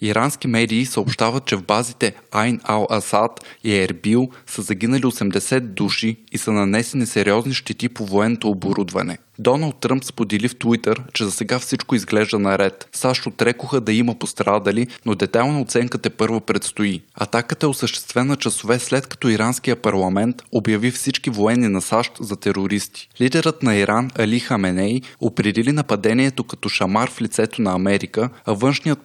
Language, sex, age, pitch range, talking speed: Bulgarian, male, 20-39, 105-125 Hz, 155 wpm